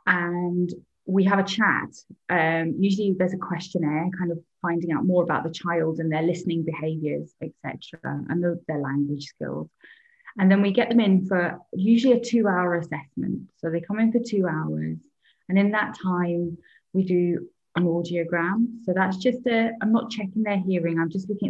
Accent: British